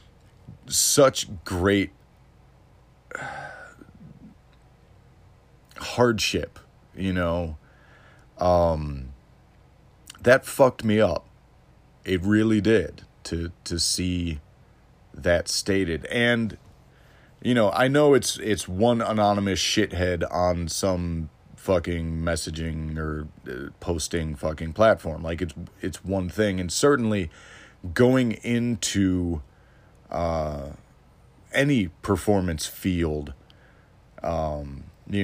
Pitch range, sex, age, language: 80-105 Hz, male, 40-59, English